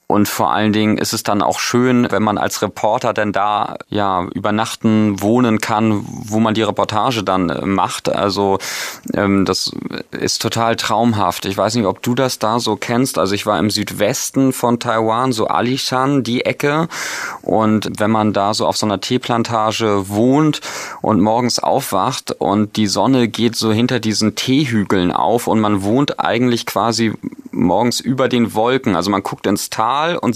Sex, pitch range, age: male, 105-130 Hz, 30-49